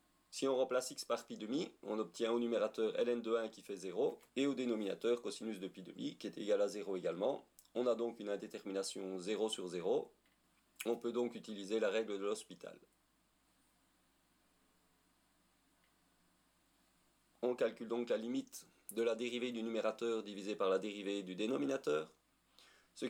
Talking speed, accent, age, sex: 165 wpm, French, 40-59, male